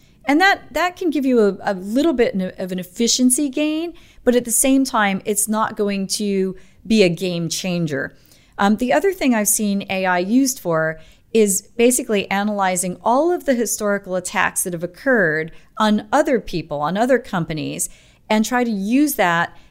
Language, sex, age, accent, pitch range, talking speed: English, female, 40-59, American, 185-235 Hz, 175 wpm